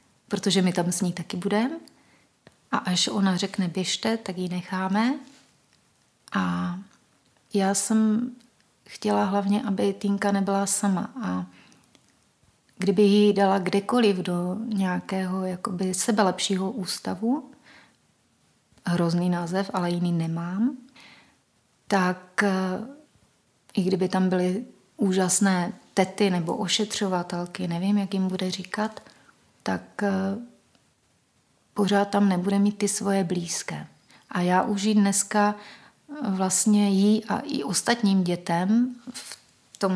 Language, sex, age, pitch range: Czech, female, 30-49, 180-210 Hz